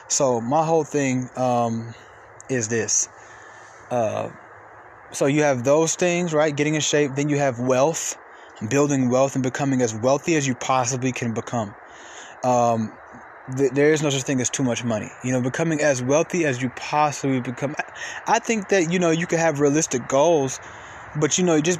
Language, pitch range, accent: English, 125-150 Hz, American